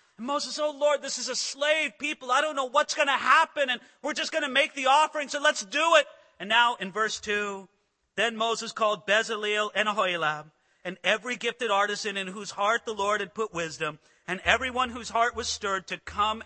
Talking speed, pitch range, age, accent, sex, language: 215 wpm, 180-260 Hz, 40-59, American, male, English